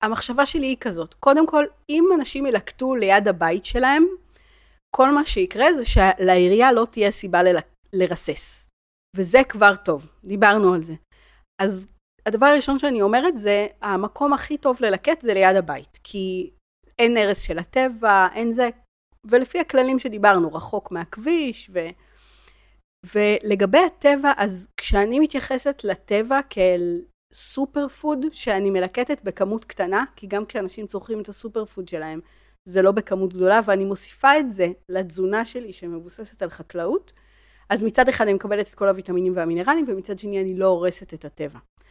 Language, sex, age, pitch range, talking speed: Hebrew, female, 40-59, 185-255 Hz, 145 wpm